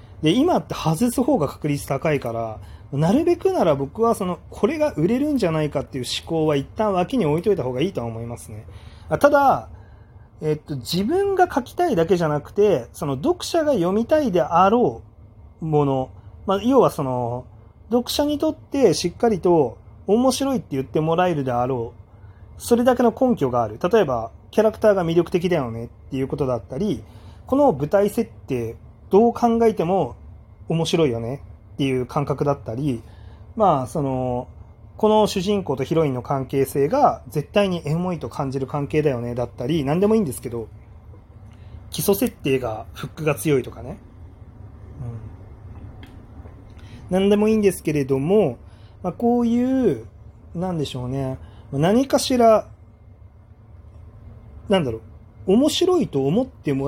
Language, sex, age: Japanese, male, 30-49